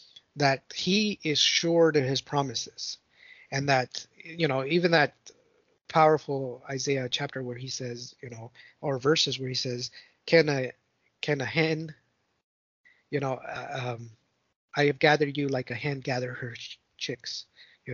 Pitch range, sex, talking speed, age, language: 130-160 Hz, male, 155 wpm, 30-49, English